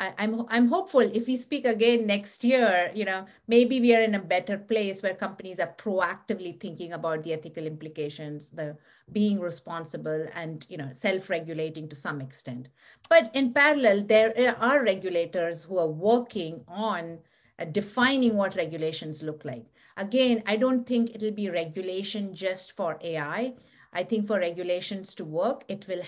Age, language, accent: 50-69, English, Indian